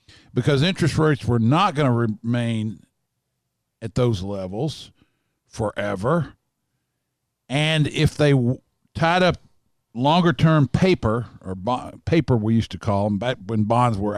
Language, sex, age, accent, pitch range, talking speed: English, male, 50-69, American, 115-150 Hz, 125 wpm